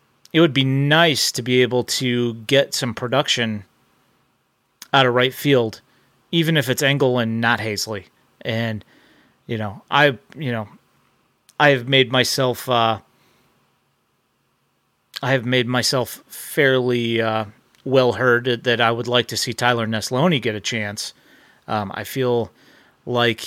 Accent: American